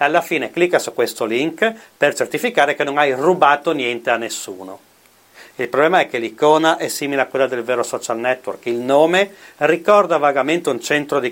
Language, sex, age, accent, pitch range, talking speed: Italian, male, 40-59, native, 120-155 Hz, 185 wpm